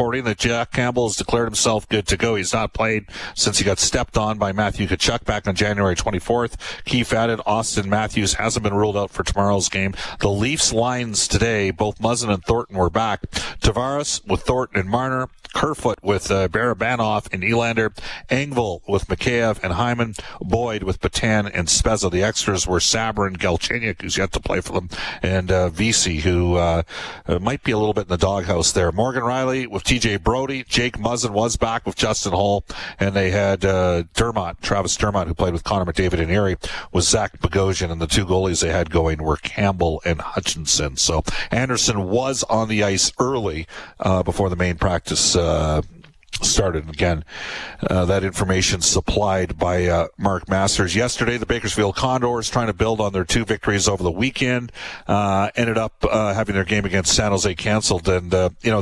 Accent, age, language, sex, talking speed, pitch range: American, 40-59, English, male, 185 wpm, 95-115 Hz